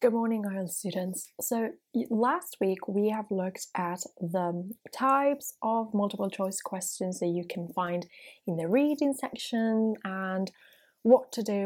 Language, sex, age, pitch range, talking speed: English, female, 20-39, 180-235 Hz, 150 wpm